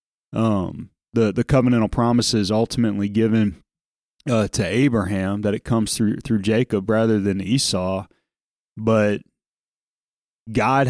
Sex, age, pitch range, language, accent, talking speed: male, 30-49, 105-120 Hz, English, American, 115 wpm